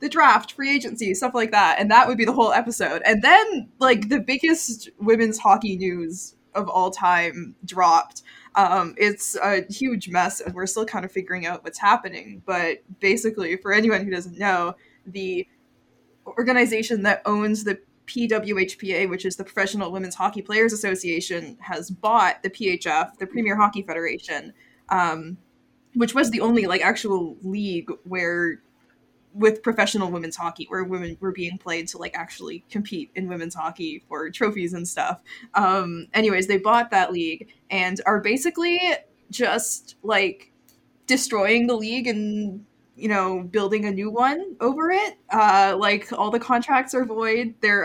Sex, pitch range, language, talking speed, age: female, 185-235 Hz, English, 160 wpm, 20-39